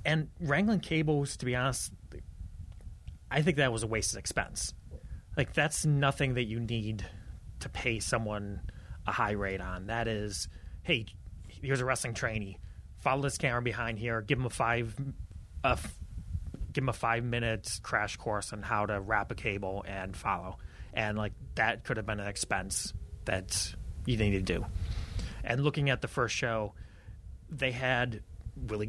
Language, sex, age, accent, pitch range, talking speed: English, male, 30-49, American, 95-120 Hz, 155 wpm